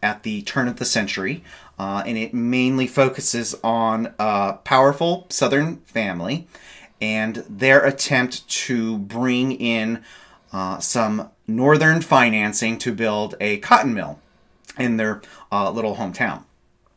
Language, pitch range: English, 110-135 Hz